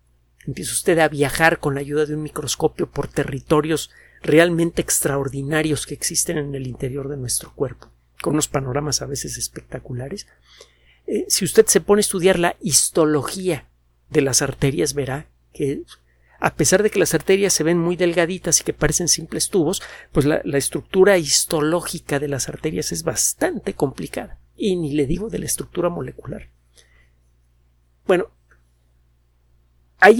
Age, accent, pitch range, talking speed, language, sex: 50-69, Mexican, 110-175 Hz, 155 wpm, Spanish, male